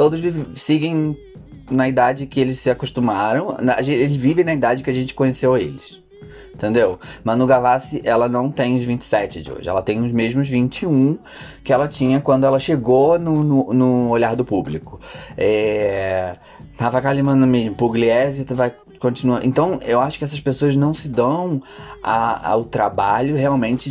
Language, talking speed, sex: Portuguese, 160 wpm, male